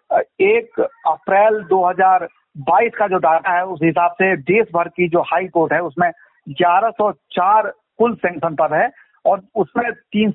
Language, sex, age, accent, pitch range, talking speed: Hindi, male, 50-69, native, 175-225 Hz, 145 wpm